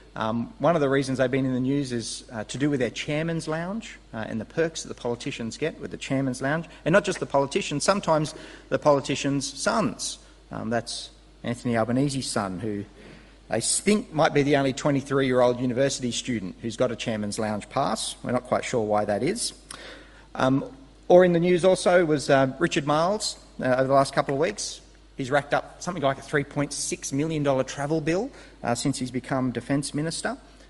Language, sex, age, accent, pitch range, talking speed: English, male, 40-59, Australian, 120-160 Hz, 195 wpm